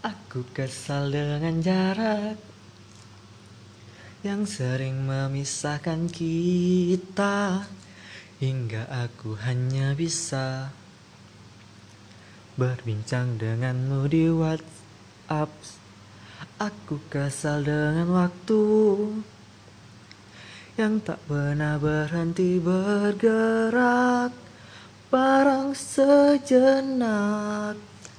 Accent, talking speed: native, 55 wpm